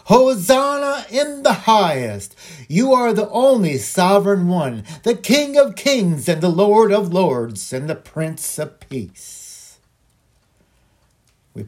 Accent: American